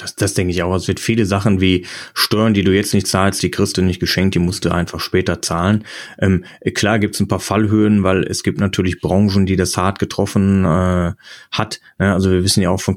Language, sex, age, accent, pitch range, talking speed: German, male, 30-49, German, 90-100 Hz, 235 wpm